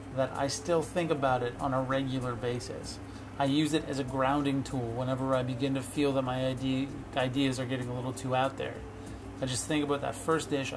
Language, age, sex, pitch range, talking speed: English, 30-49, male, 120-140 Hz, 215 wpm